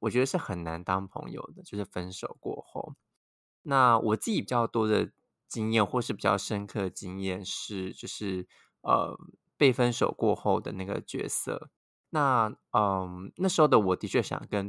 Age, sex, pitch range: 20-39, male, 95-130 Hz